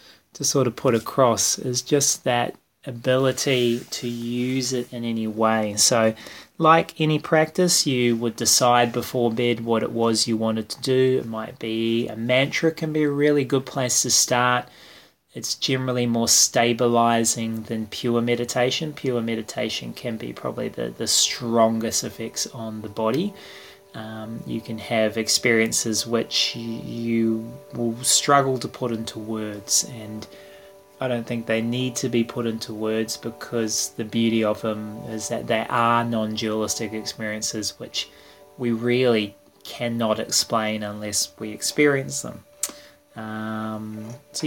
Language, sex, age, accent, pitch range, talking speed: English, male, 20-39, Australian, 110-135 Hz, 145 wpm